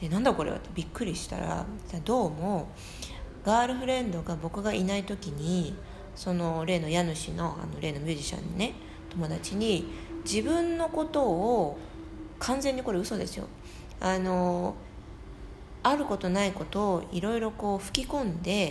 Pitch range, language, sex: 165-225 Hz, Japanese, female